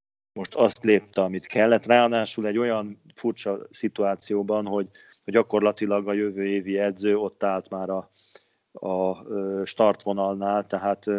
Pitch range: 95-110 Hz